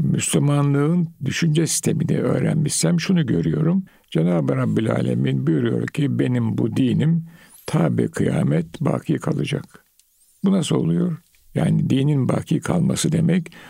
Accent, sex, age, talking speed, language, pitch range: native, male, 60-79, 115 wpm, Turkish, 145-170 Hz